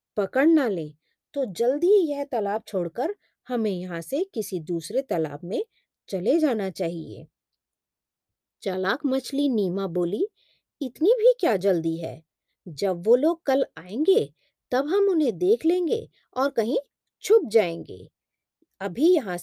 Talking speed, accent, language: 135 wpm, native, Hindi